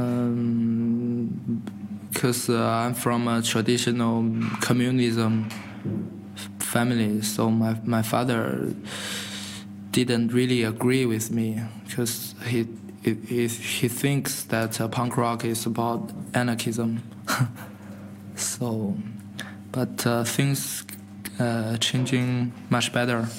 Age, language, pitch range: 20-39, Danish, 105-120 Hz